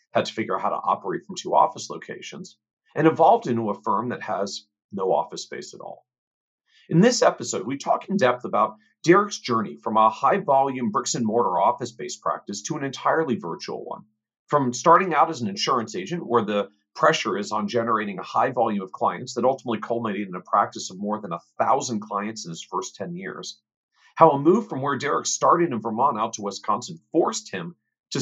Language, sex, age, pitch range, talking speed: English, male, 40-59, 110-165 Hz, 200 wpm